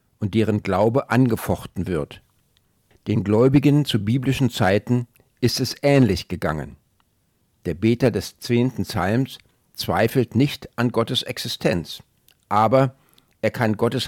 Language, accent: German, German